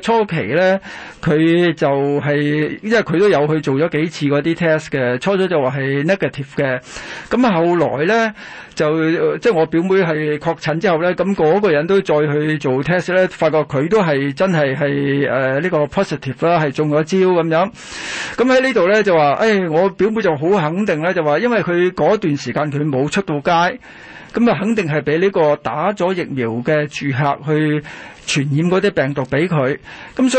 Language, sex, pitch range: Chinese, male, 145-190 Hz